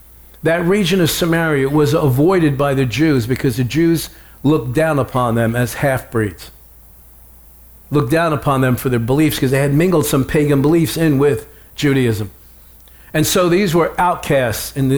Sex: male